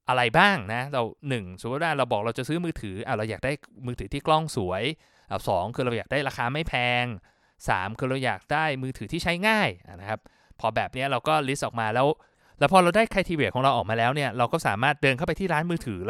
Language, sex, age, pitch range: Thai, male, 20-39, 120-170 Hz